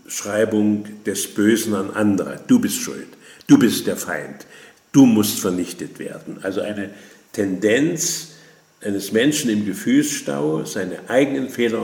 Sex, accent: male, German